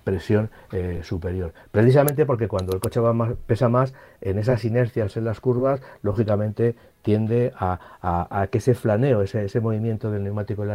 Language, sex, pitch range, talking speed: Spanish, male, 100-125 Hz, 185 wpm